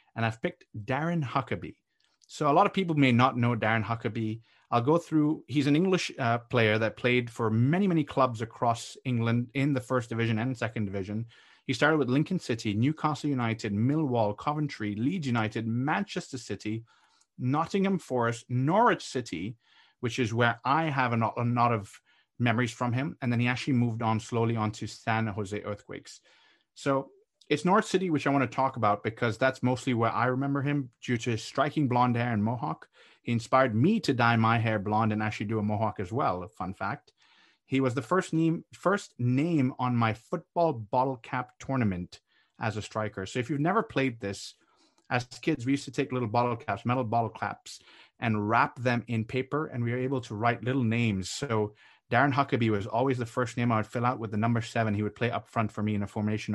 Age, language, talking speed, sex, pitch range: 30-49, English, 205 wpm, male, 115-140 Hz